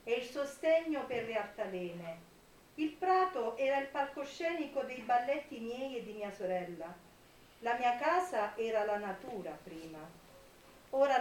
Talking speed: 140 wpm